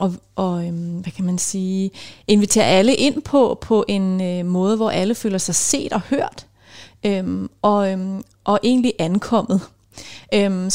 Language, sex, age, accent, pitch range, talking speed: Danish, female, 30-49, native, 190-235 Hz, 155 wpm